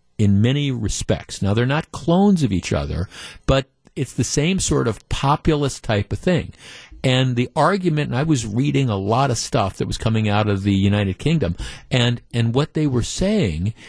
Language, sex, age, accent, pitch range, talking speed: English, male, 50-69, American, 115-155 Hz, 195 wpm